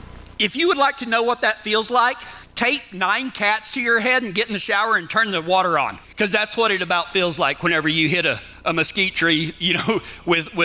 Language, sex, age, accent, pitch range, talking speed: English, male, 40-59, American, 165-220 Hz, 240 wpm